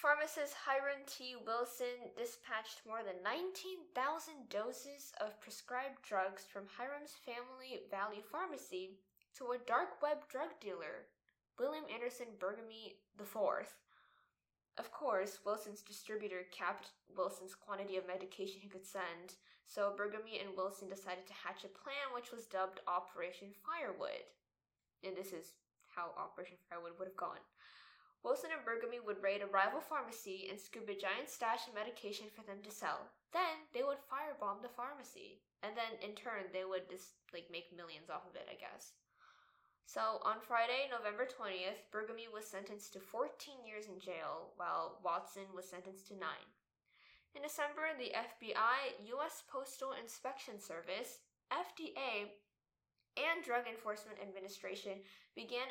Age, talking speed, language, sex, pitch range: 10-29, 145 wpm, English, female, 190-255 Hz